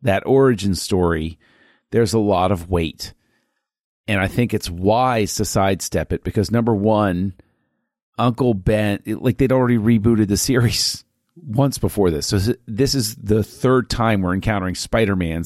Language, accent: English, American